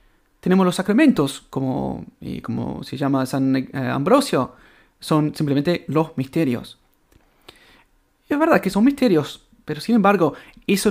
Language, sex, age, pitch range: Spanish, male, 30-49, 140-185 Hz